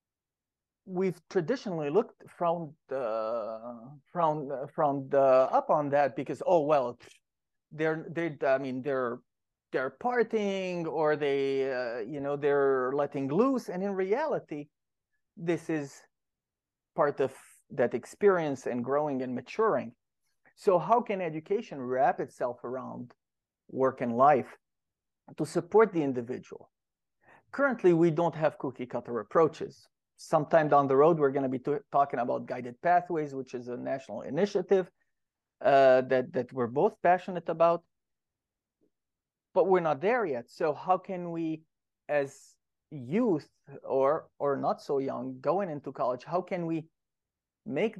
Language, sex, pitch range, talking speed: English, male, 135-175 Hz, 135 wpm